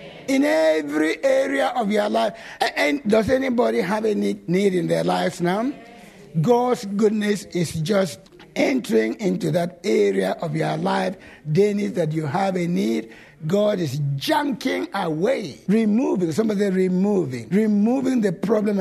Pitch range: 170-230 Hz